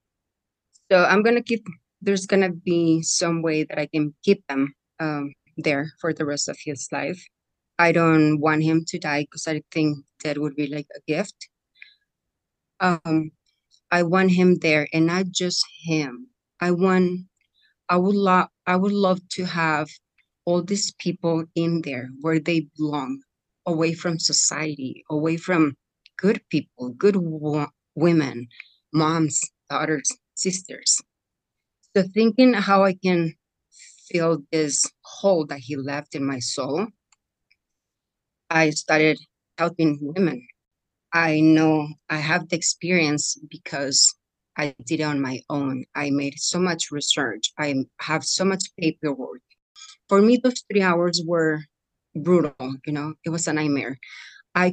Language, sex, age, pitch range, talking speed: English, female, 30-49, 150-180 Hz, 145 wpm